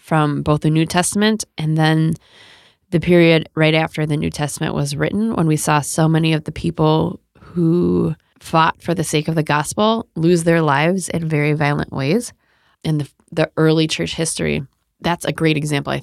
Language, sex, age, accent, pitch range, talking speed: English, female, 20-39, American, 145-165 Hz, 185 wpm